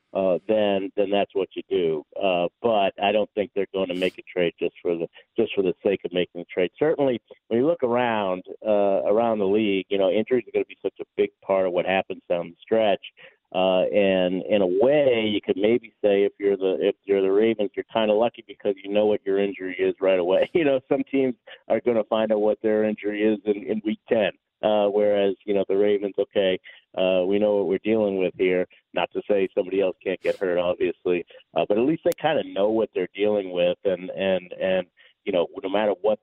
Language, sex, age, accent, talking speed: English, male, 50-69, American, 240 wpm